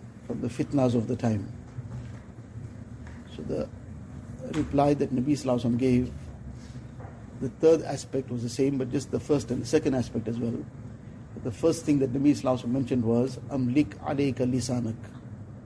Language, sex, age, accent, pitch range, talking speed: English, male, 50-69, Indian, 120-140 Hz, 150 wpm